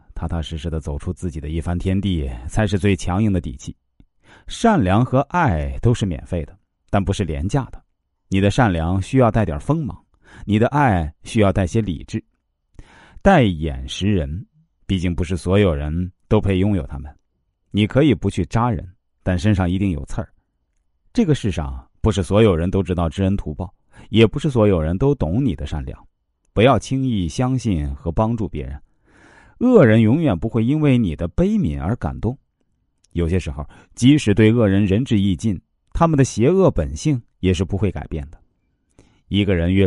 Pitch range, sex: 85-115 Hz, male